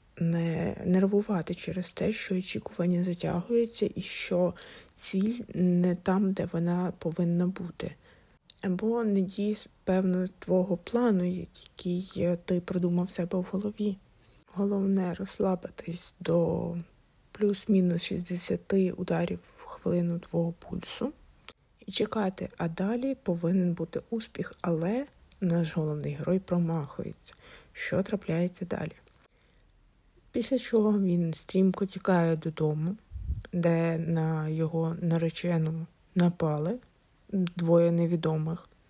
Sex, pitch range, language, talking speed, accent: female, 165-195 Hz, Ukrainian, 100 wpm, native